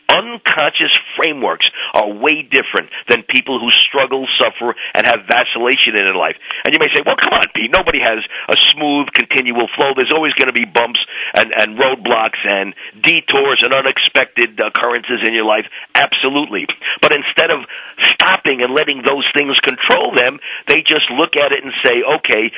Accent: American